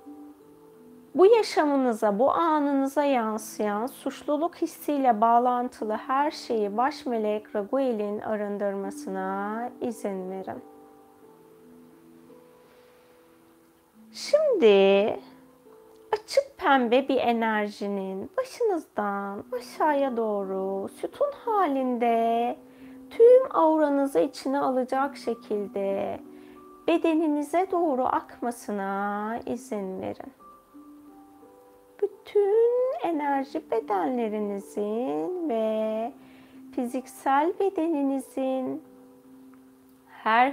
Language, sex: Turkish, female